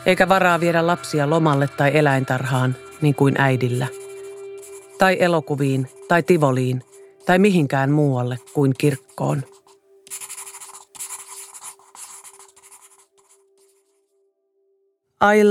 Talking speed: 75 wpm